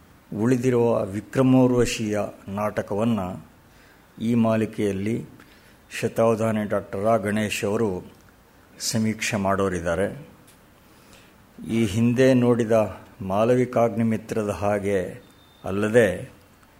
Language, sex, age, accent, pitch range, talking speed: Kannada, male, 60-79, native, 105-120 Hz, 65 wpm